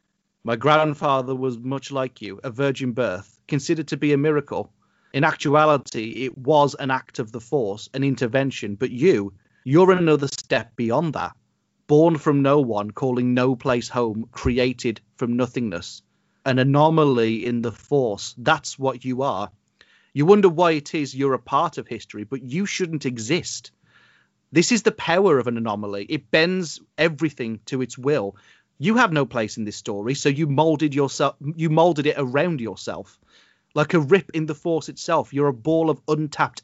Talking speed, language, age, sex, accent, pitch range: 175 wpm, English, 30-49, male, British, 120-155 Hz